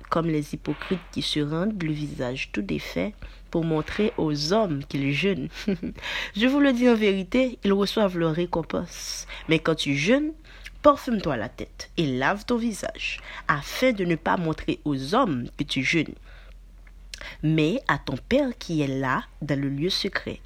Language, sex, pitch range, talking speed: French, female, 150-220 Hz, 170 wpm